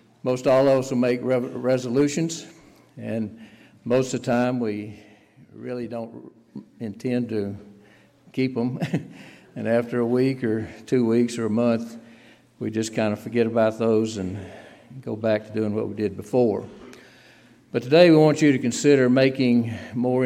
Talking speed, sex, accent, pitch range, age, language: 165 wpm, male, American, 110-130 Hz, 60-79, English